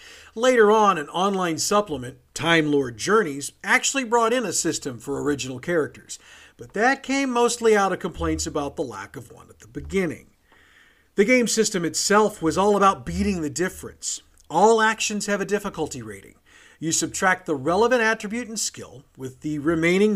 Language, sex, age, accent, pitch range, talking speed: English, male, 50-69, American, 150-215 Hz, 170 wpm